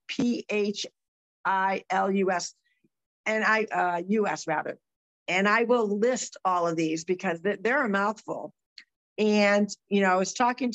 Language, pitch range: English, 180-225 Hz